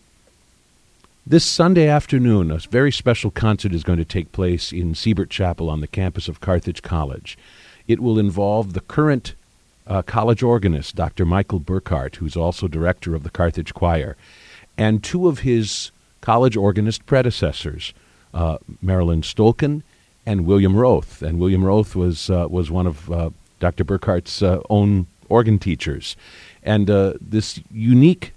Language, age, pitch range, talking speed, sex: English, 50-69, 85-110 Hz, 150 wpm, male